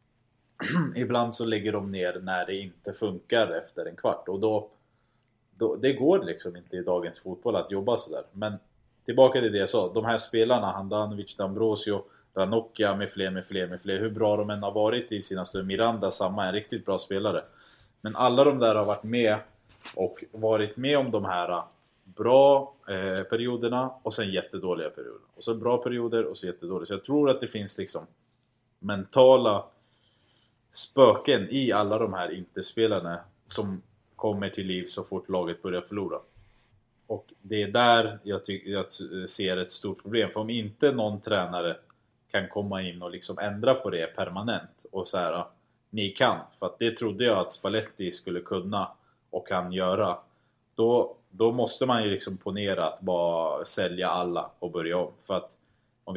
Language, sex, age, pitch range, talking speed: Swedish, male, 20-39, 95-120 Hz, 180 wpm